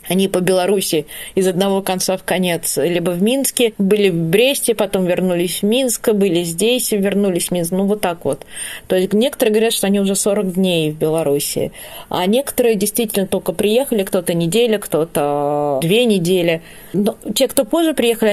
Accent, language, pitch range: native, Russian, 180-215 Hz